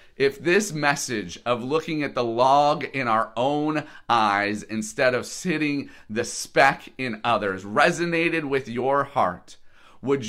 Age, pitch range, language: 30-49, 110-160 Hz, English